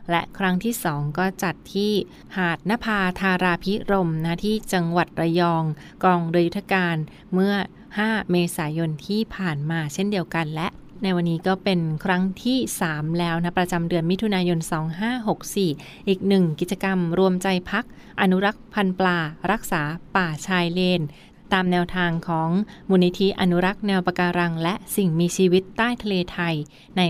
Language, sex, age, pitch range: Thai, female, 20-39, 170-195 Hz